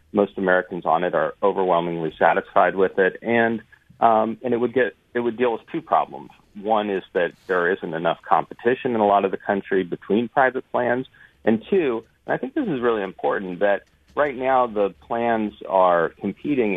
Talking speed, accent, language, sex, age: 190 wpm, American, English, male, 40-59